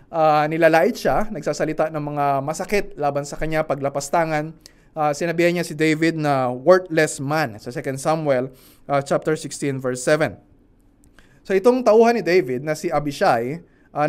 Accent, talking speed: native, 155 wpm